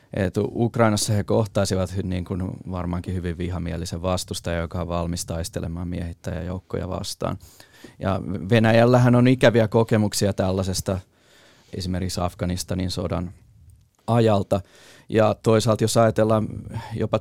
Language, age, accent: Finnish, 30-49, native